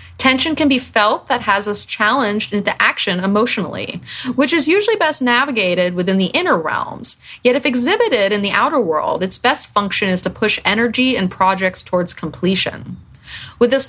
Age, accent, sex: 30-49, American, female